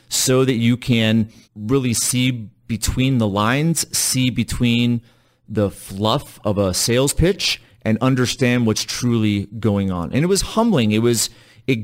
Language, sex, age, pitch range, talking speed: English, male, 30-49, 105-125 Hz, 150 wpm